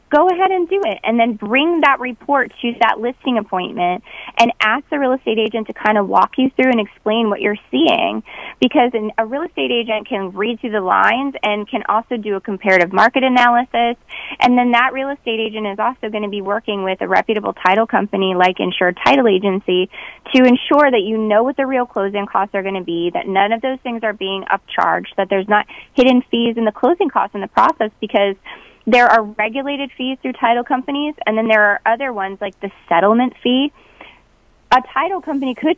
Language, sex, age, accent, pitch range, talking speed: English, female, 20-39, American, 205-260 Hz, 210 wpm